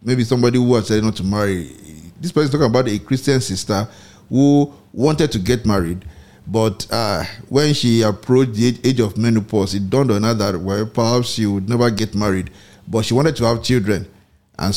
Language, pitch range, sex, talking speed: English, 100-125 Hz, male, 200 wpm